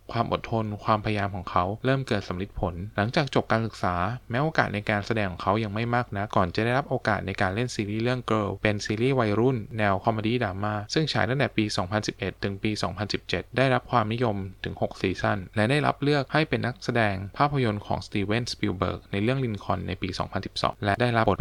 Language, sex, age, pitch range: Thai, male, 20-39, 100-120 Hz